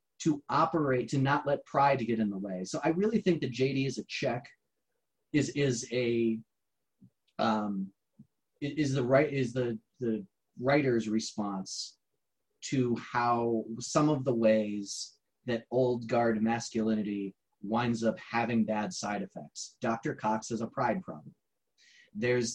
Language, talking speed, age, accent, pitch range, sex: English, 140 wpm, 30-49, American, 110-140 Hz, male